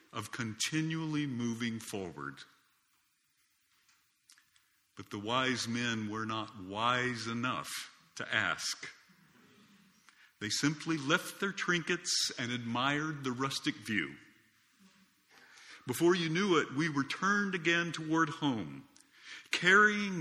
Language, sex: English, male